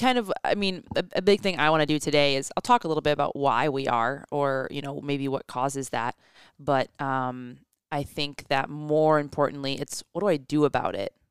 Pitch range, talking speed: 135-155 Hz, 235 wpm